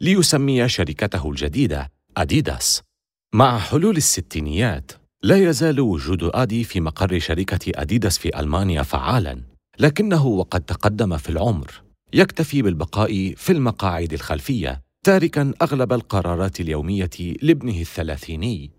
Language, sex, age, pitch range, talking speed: Arabic, male, 40-59, 80-125 Hz, 110 wpm